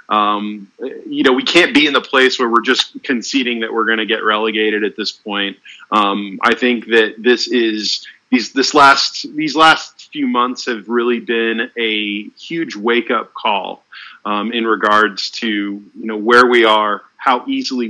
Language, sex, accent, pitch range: English, male, American, 110-145 Hz